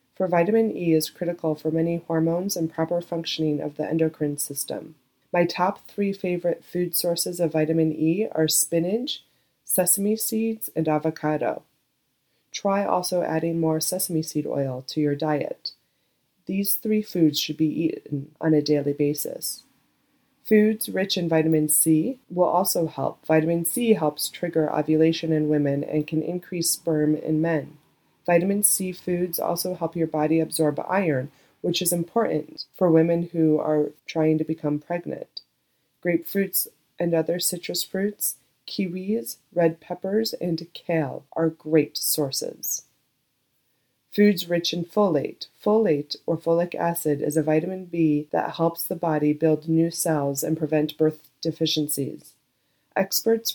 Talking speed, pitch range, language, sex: 145 wpm, 155-175 Hz, English, female